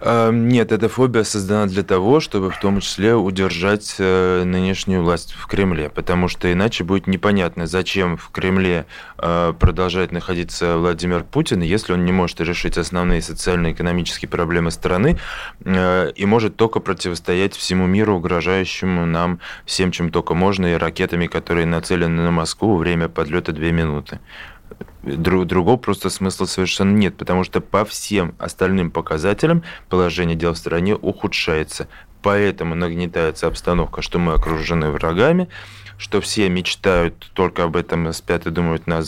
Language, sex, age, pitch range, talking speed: Russian, male, 20-39, 85-100 Hz, 140 wpm